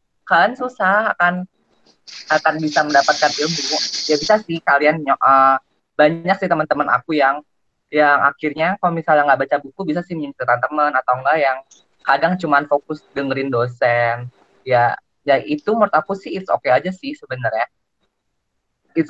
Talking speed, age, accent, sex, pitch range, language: 155 wpm, 20-39, native, female, 145-180 Hz, Indonesian